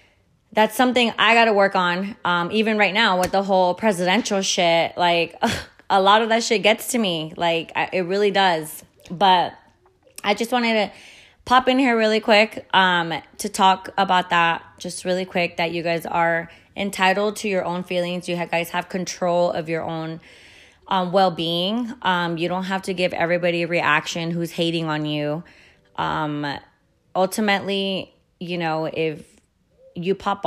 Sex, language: female, English